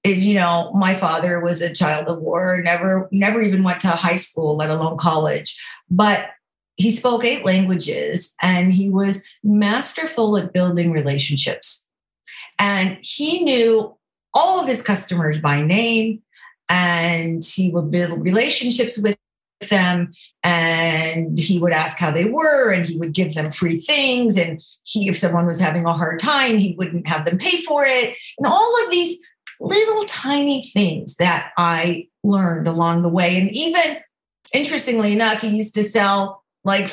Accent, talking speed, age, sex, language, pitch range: American, 160 wpm, 50-69, female, English, 175-250 Hz